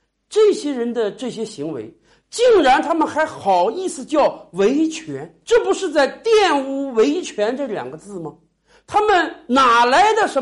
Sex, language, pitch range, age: male, Chinese, 235-370 Hz, 50-69